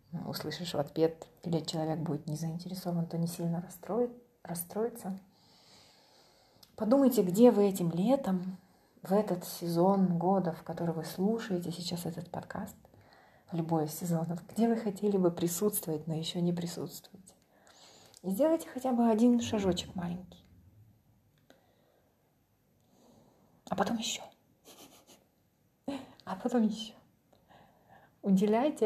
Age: 30-49